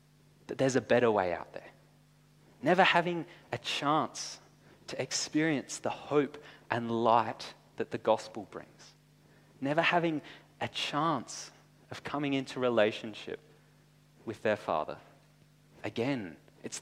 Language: English